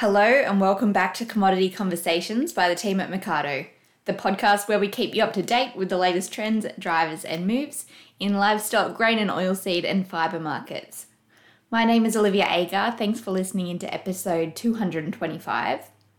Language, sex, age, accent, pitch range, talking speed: English, female, 20-39, Australian, 170-210 Hz, 175 wpm